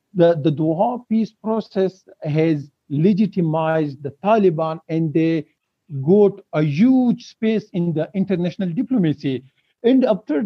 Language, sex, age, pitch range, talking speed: English, male, 50-69, 155-210 Hz, 120 wpm